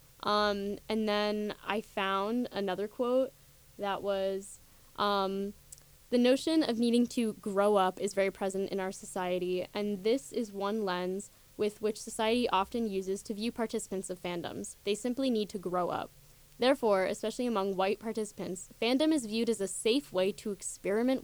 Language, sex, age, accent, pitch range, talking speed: English, female, 10-29, American, 185-220 Hz, 165 wpm